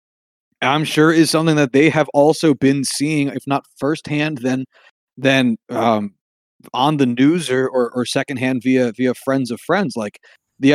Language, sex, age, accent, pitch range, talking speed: English, male, 30-49, American, 135-185 Hz, 165 wpm